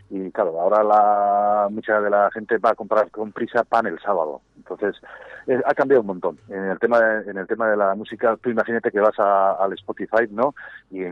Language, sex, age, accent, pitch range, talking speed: Spanish, male, 40-59, Spanish, 95-115 Hz, 220 wpm